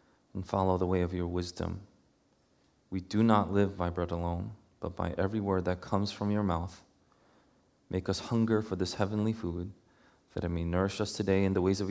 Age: 30-49